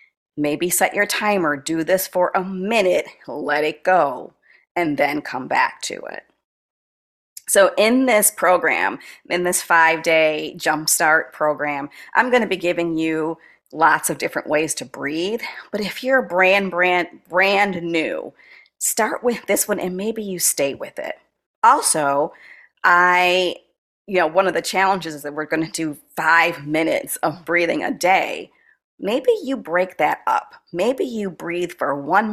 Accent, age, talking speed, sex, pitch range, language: American, 40-59, 160 wpm, female, 160-195 Hz, English